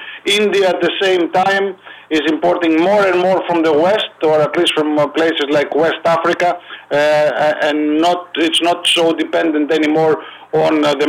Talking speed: 160 wpm